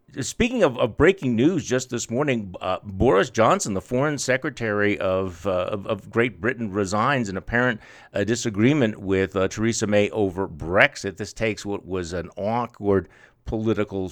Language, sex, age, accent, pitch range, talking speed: English, male, 50-69, American, 100-125 Hz, 160 wpm